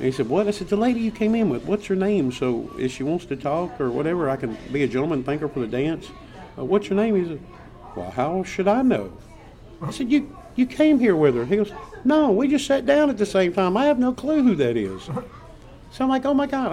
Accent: American